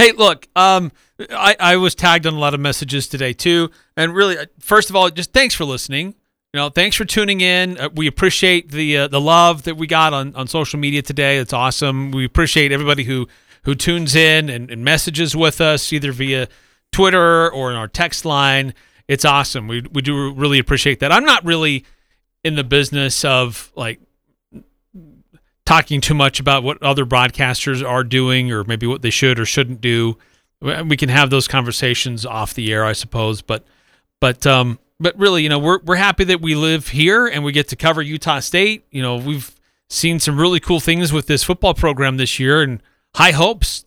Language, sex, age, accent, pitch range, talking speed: English, male, 40-59, American, 130-165 Hz, 200 wpm